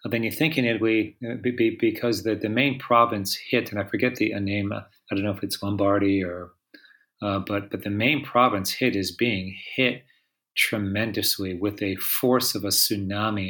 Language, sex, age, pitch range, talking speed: English, male, 40-59, 100-125 Hz, 180 wpm